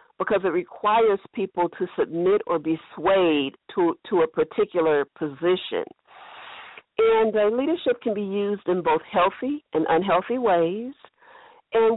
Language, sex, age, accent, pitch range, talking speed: English, female, 50-69, American, 170-225 Hz, 135 wpm